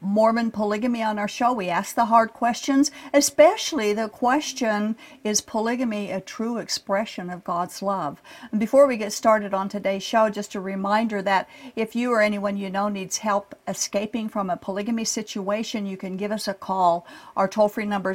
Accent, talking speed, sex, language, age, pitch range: American, 180 wpm, female, English, 50-69, 200-245 Hz